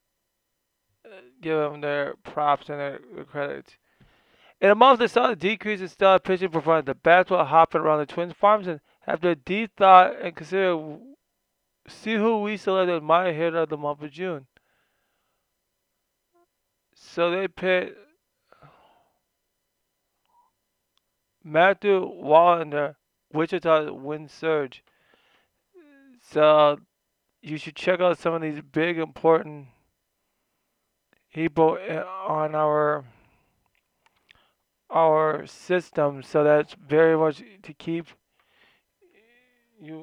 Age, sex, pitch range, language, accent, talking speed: 20-39, male, 150-185 Hz, English, American, 110 wpm